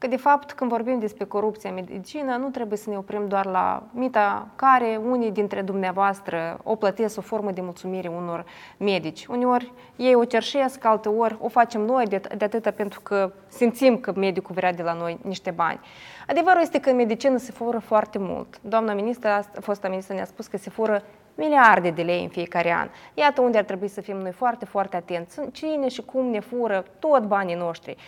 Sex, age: female, 20-39